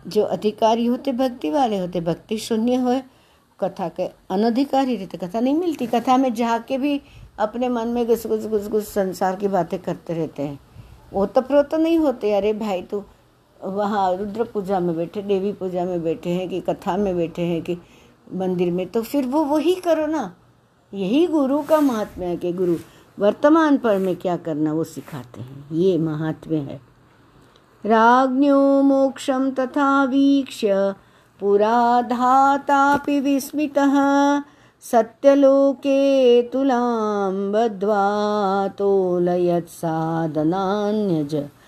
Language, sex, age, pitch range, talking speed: Hindi, female, 60-79, 180-265 Hz, 130 wpm